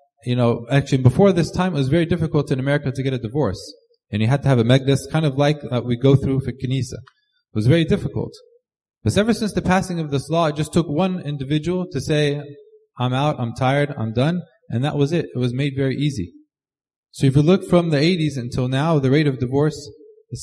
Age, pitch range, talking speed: 20-39, 125-155 Hz, 230 wpm